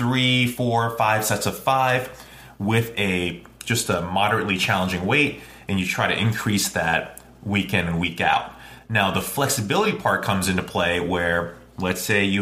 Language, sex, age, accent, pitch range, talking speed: English, male, 30-49, American, 90-120 Hz, 170 wpm